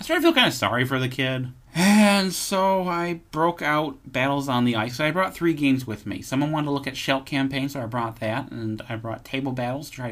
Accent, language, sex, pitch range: American, English, male, 110-140 Hz